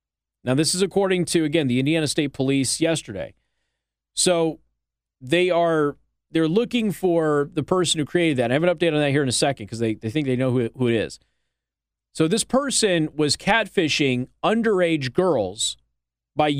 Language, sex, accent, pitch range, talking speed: English, male, American, 125-170 Hz, 185 wpm